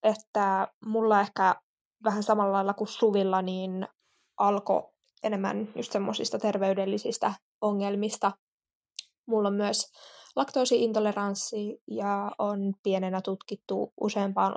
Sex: female